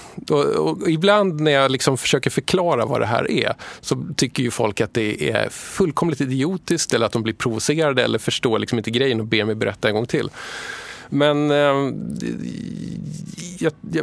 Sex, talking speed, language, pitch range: male, 170 wpm, Swedish, 115-155 Hz